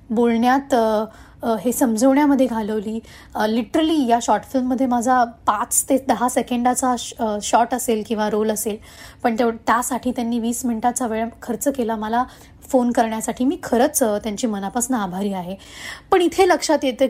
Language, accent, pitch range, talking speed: Marathi, native, 215-260 Hz, 145 wpm